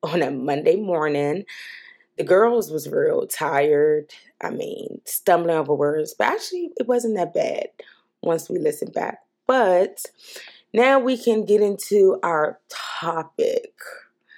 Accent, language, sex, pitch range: American, English, female, 175-260 Hz